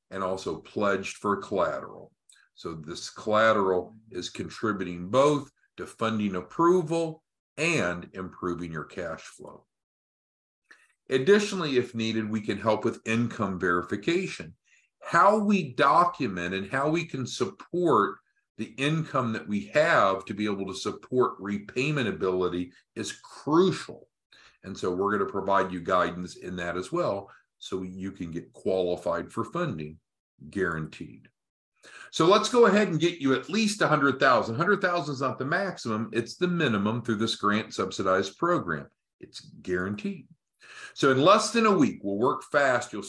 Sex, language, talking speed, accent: male, English, 145 wpm, American